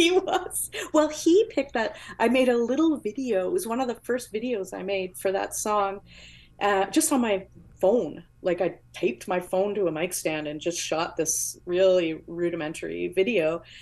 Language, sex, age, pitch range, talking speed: English, female, 30-49, 180-240 Hz, 190 wpm